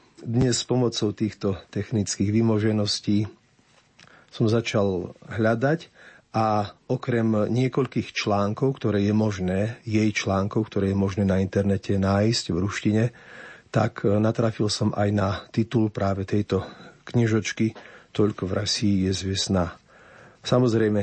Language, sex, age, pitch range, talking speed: Slovak, male, 40-59, 100-115 Hz, 115 wpm